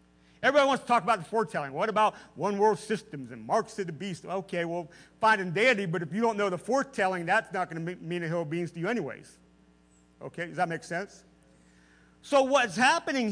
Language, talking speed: English, 220 wpm